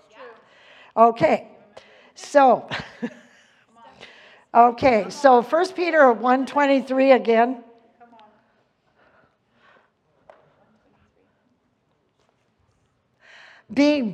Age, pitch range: 50-69, 225-290 Hz